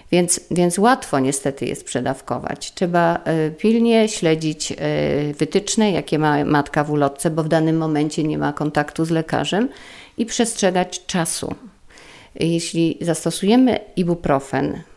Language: Polish